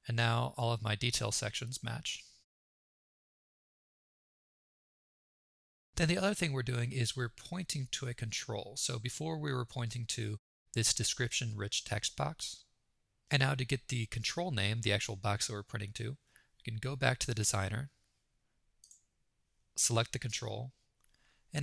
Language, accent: English, American